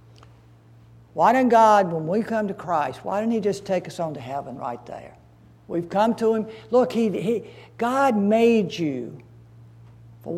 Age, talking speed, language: 60-79, 175 wpm, English